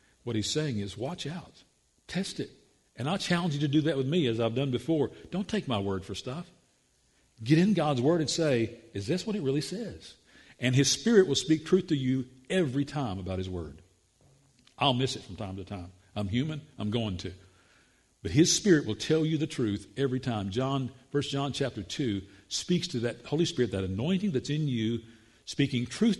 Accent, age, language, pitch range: American, 50-69, English, 105-140 Hz